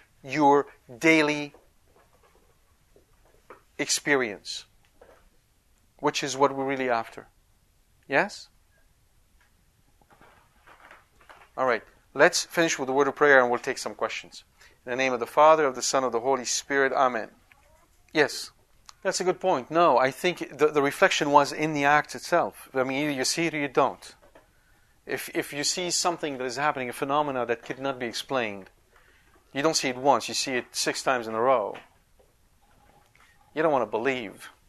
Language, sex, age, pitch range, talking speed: English, male, 50-69, 120-150 Hz, 165 wpm